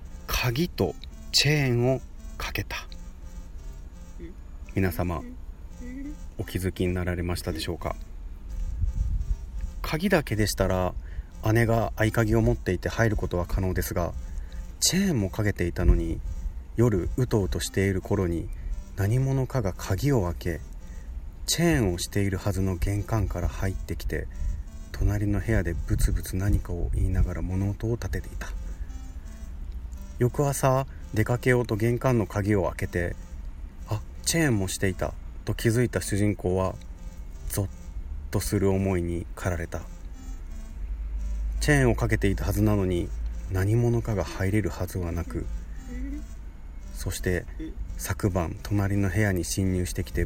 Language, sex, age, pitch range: Japanese, male, 30-49, 75-100 Hz